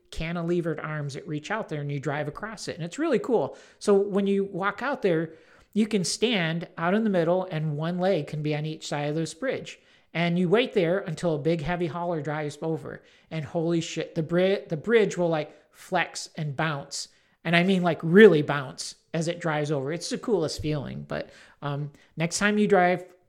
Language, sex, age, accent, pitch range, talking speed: English, male, 40-59, American, 150-180 Hz, 210 wpm